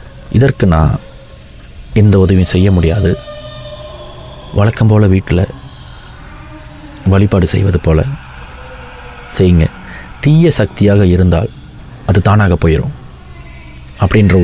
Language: Tamil